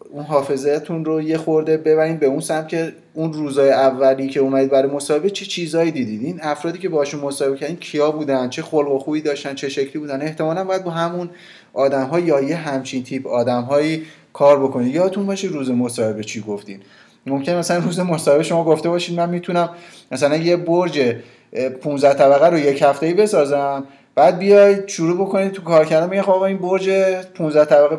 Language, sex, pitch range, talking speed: Persian, male, 135-165 Hz, 185 wpm